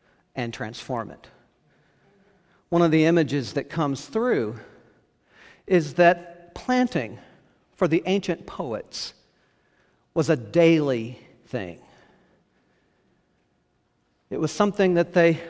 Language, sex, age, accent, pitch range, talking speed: English, male, 50-69, American, 145-180 Hz, 100 wpm